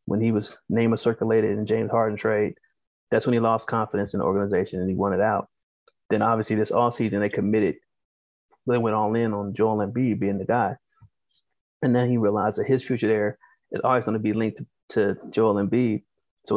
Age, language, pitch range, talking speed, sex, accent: 30-49, English, 105-115 Hz, 210 wpm, male, American